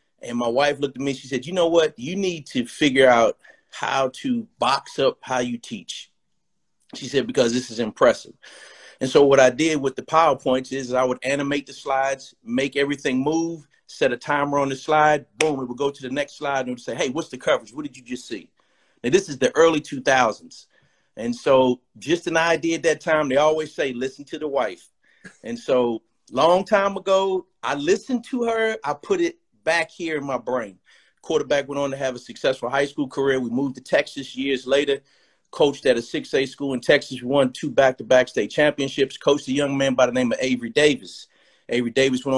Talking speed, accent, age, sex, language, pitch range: 215 wpm, American, 40-59, male, English, 130-165 Hz